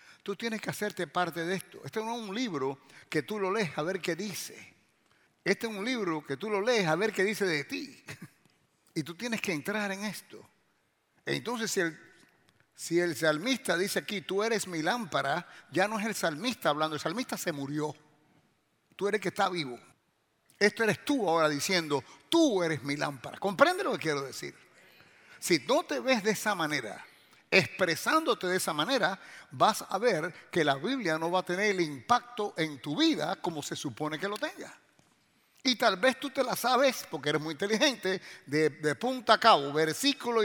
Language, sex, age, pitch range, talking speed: English, male, 60-79, 155-215 Hz, 195 wpm